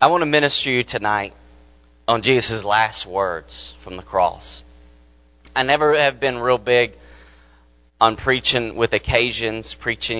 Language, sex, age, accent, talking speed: English, male, 30-49, American, 145 wpm